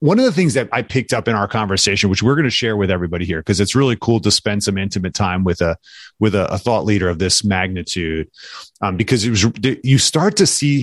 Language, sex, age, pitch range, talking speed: English, male, 30-49, 105-135 Hz, 255 wpm